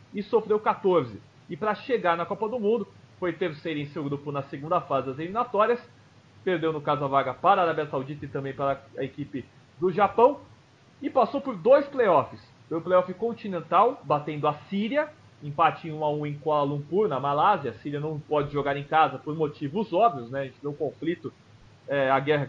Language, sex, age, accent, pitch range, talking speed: English, male, 30-49, Brazilian, 145-210 Hz, 195 wpm